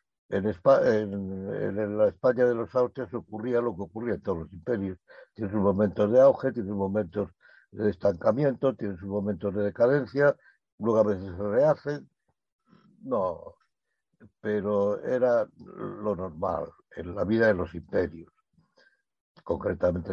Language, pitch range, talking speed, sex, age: Spanish, 90-115 Hz, 145 wpm, male, 60-79